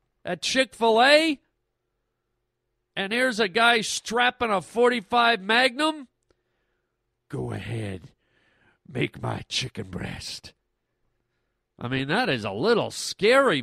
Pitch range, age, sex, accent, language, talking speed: 155-235 Hz, 50-69, male, American, English, 110 wpm